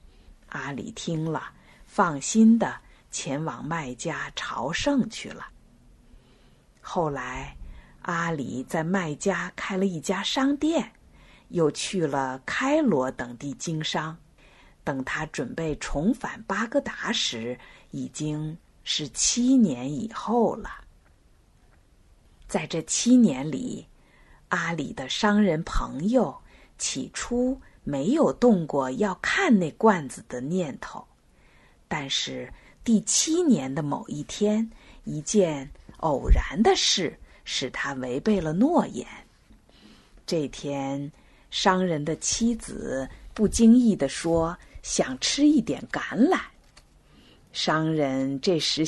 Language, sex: Chinese, female